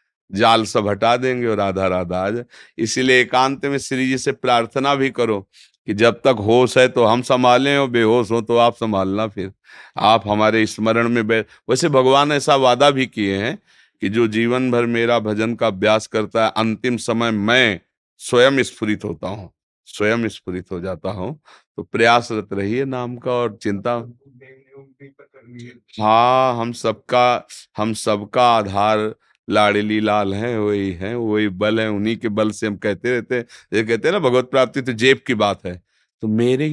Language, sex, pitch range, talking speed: Hindi, male, 105-125 Hz, 175 wpm